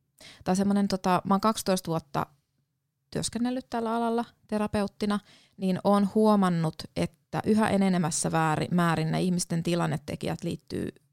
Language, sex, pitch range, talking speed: Finnish, female, 155-195 Hz, 115 wpm